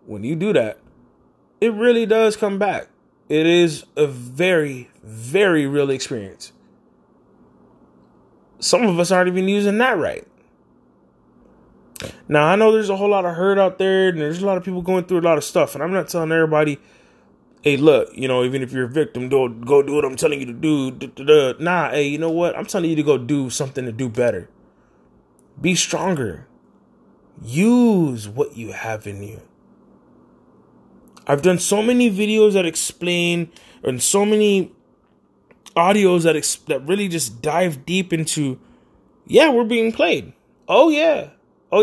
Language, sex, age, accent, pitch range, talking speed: English, male, 20-39, American, 135-190 Hz, 170 wpm